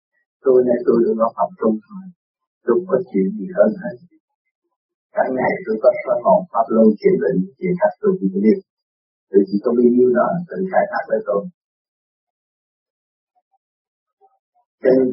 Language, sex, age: Vietnamese, male, 50-69